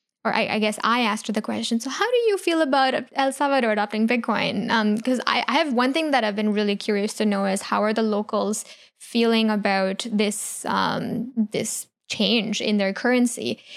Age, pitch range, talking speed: 10-29, 210-240 Hz, 205 wpm